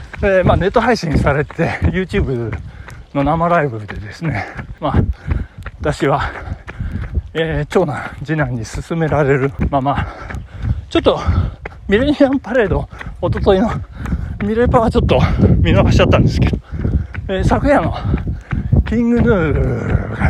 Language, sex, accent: Japanese, male, native